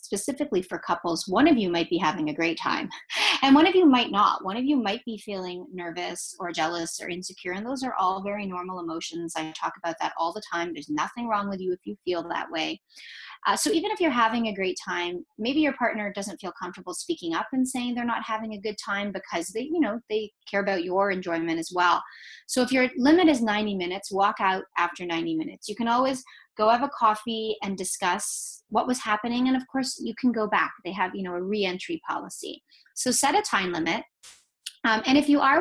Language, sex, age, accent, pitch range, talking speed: English, female, 30-49, American, 180-245 Hz, 230 wpm